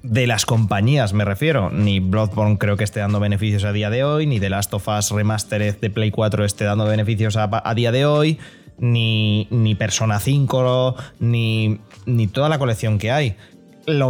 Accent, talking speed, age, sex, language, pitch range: Spanish, 185 wpm, 20-39, male, Spanish, 110-155 Hz